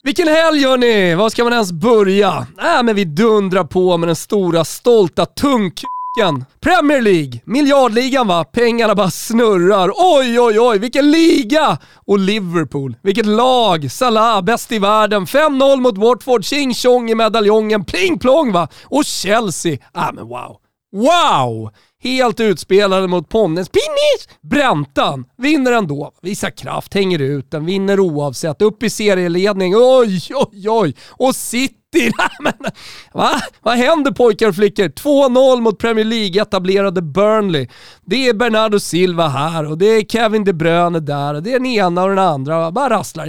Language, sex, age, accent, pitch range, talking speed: Swedish, male, 30-49, native, 180-250 Hz, 155 wpm